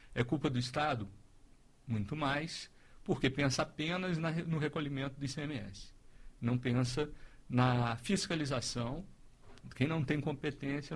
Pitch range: 120-160 Hz